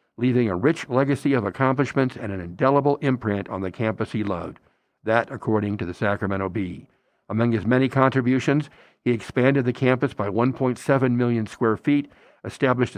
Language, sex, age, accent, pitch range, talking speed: English, male, 60-79, American, 105-135 Hz, 160 wpm